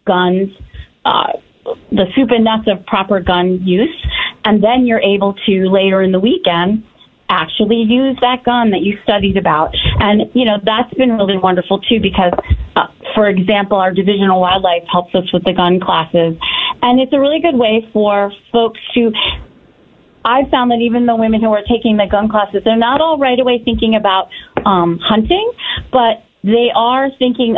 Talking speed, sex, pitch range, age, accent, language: 180 wpm, female, 185-235 Hz, 30-49, American, English